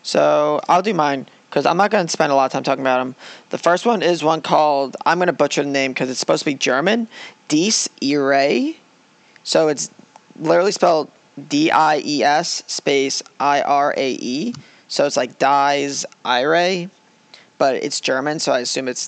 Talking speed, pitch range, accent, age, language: 175 wpm, 140-180 Hz, American, 20-39, English